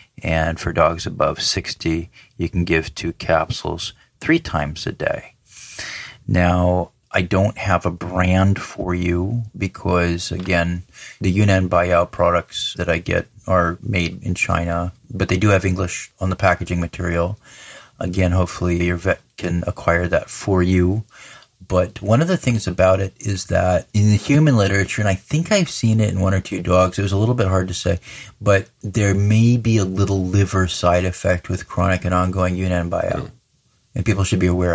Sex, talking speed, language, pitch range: male, 180 wpm, English, 90-105 Hz